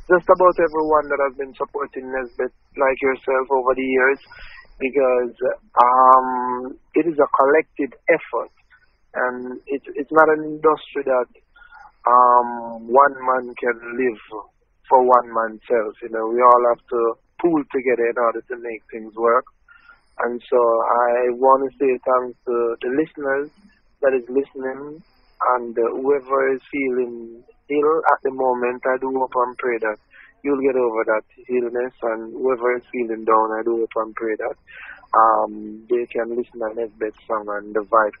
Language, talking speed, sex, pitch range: English, 160 wpm, male, 115-135 Hz